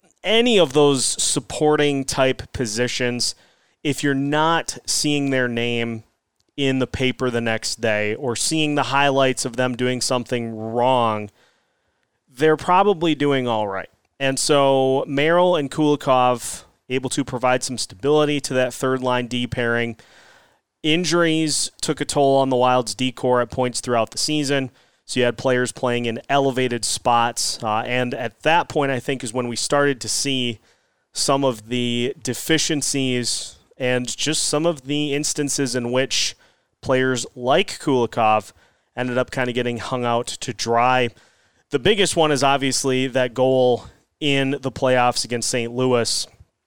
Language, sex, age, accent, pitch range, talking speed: English, male, 30-49, American, 120-140 Hz, 155 wpm